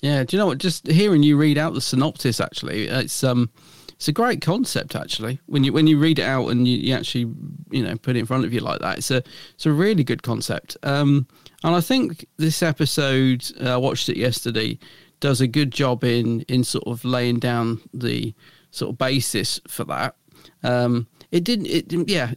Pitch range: 125-160 Hz